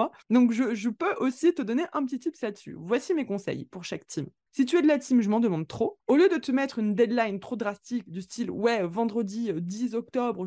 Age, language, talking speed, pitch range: 20-39, French, 245 wpm, 195-250 Hz